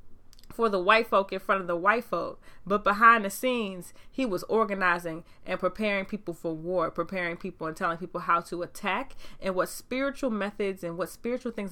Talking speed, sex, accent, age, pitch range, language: 195 wpm, female, American, 20-39, 180-235 Hz, English